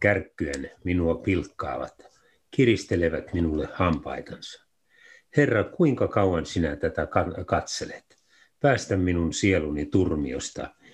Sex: male